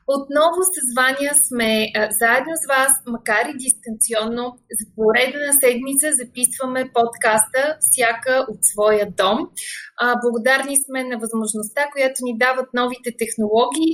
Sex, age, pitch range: female, 20-39, 230-295 Hz